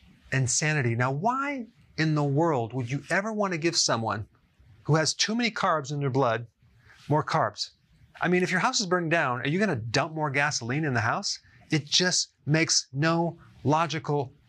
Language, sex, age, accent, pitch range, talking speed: English, male, 40-59, American, 125-160 Hz, 190 wpm